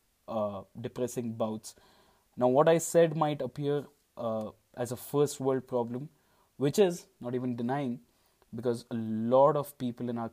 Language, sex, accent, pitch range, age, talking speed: English, male, Indian, 115-130 Hz, 20-39, 150 wpm